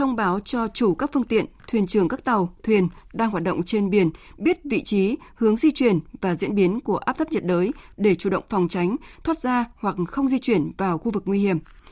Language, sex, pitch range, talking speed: Vietnamese, female, 190-255 Hz, 235 wpm